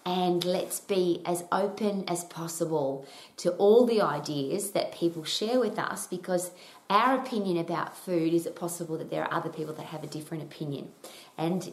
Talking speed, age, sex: 180 wpm, 30-49, female